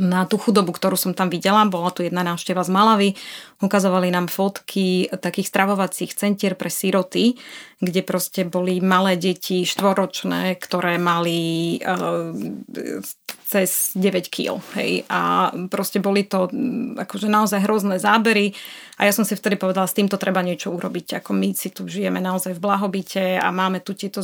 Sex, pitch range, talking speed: female, 185-205 Hz, 160 wpm